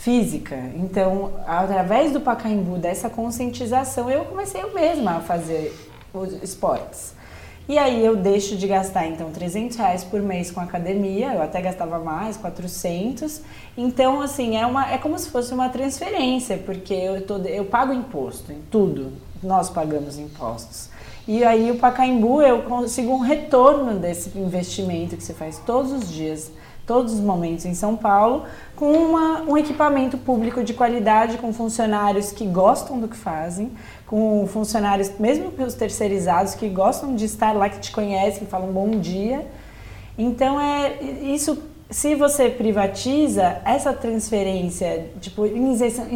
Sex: female